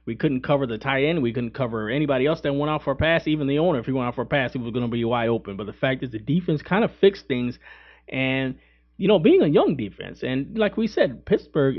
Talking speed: 285 wpm